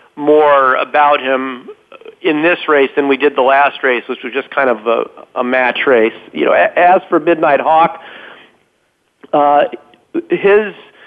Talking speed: 155 wpm